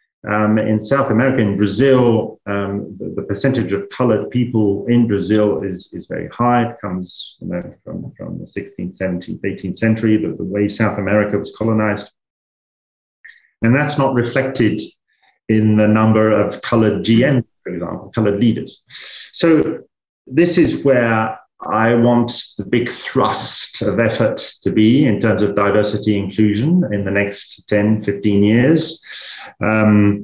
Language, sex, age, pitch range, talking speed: English, male, 40-59, 105-125 Hz, 145 wpm